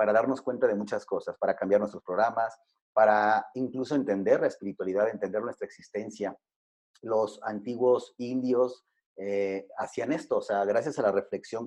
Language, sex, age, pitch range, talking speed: Spanish, male, 30-49, 105-135 Hz, 155 wpm